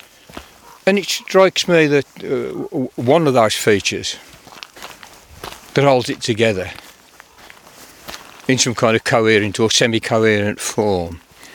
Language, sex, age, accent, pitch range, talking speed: English, male, 50-69, British, 115-135 Hz, 115 wpm